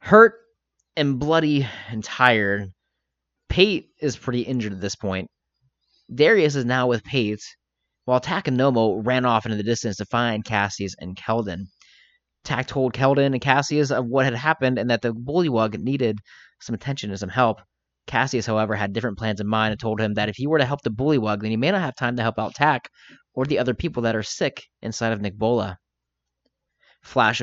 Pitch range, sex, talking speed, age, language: 105-135 Hz, male, 195 wpm, 20-39, English